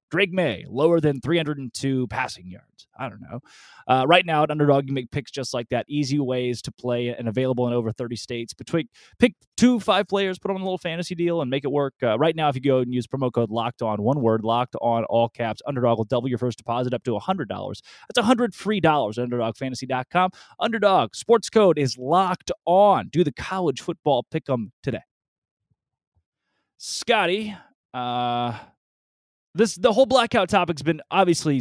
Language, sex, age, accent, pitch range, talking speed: English, male, 20-39, American, 125-180 Hz, 190 wpm